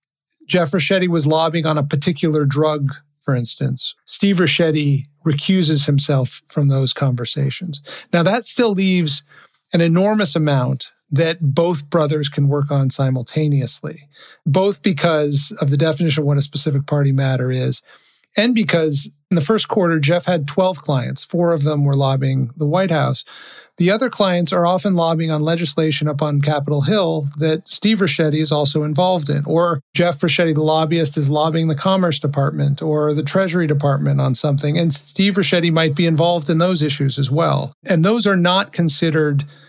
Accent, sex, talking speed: American, male, 170 wpm